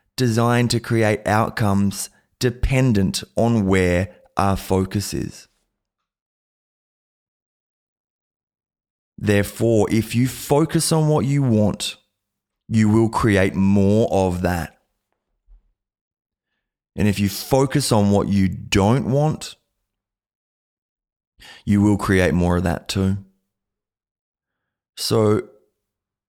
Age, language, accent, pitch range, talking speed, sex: 20-39, English, Australian, 95-110 Hz, 95 wpm, male